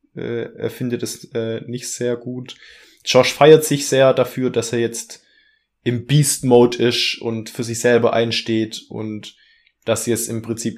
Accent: German